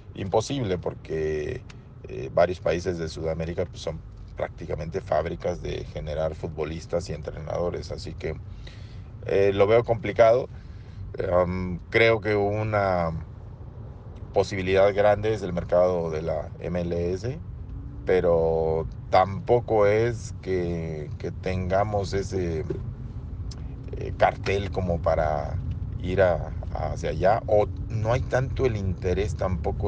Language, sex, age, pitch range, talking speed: Spanish, male, 40-59, 85-100 Hz, 115 wpm